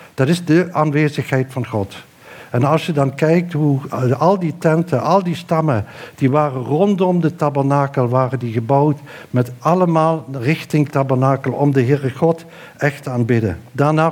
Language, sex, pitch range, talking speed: Dutch, male, 120-155 Hz, 160 wpm